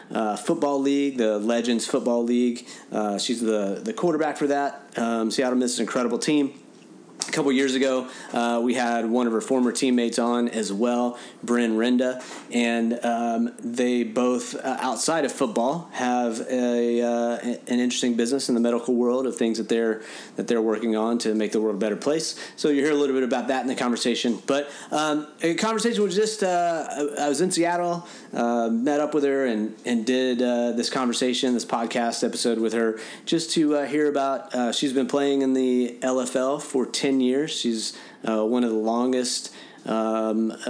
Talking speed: 195 wpm